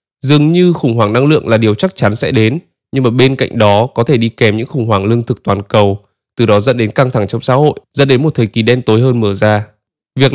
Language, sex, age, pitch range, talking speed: Vietnamese, male, 20-39, 115-155 Hz, 280 wpm